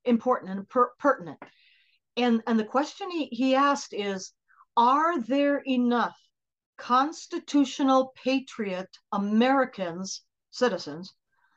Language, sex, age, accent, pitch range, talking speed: English, female, 50-69, American, 205-260 Hz, 100 wpm